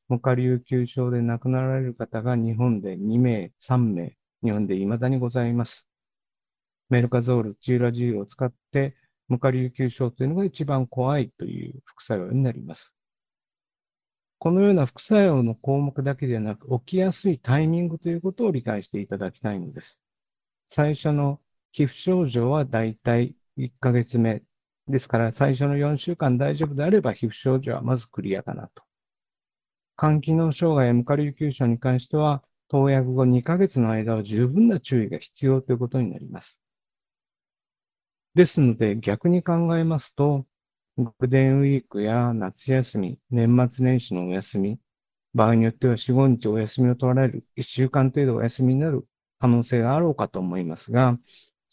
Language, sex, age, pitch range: Japanese, male, 50-69, 115-140 Hz